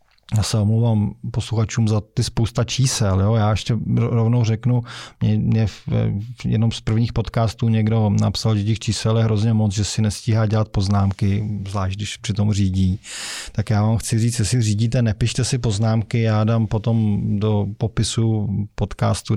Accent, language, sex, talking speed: native, Czech, male, 160 wpm